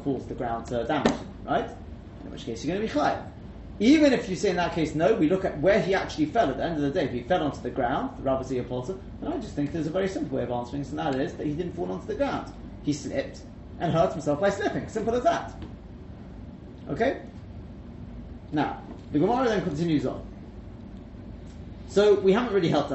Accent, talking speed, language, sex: British, 235 wpm, English, male